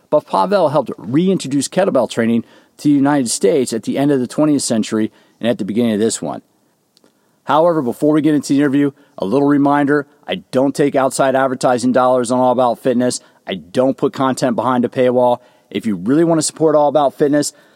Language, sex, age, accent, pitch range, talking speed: English, male, 40-59, American, 125-155 Hz, 205 wpm